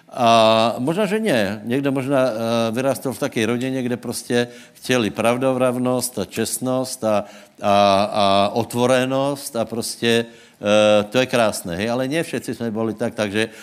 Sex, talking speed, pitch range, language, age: male, 150 wpm, 105-125 Hz, Slovak, 60-79